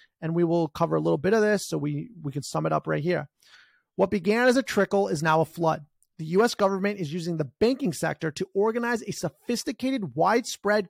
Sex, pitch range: male, 175-235 Hz